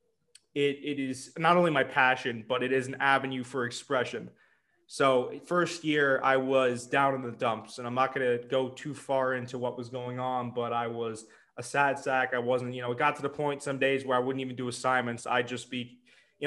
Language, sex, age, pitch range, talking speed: English, male, 20-39, 125-145 Hz, 235 wpm